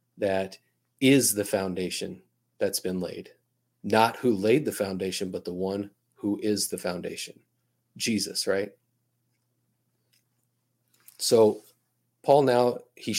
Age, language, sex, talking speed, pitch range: 30-49, English, male, 115 wpm, 95-120 Hz